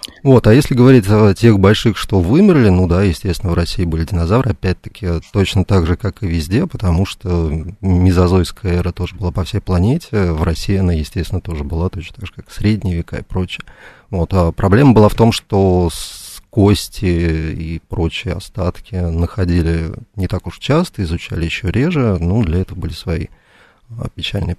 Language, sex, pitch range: Russian, male, 85-105 Hz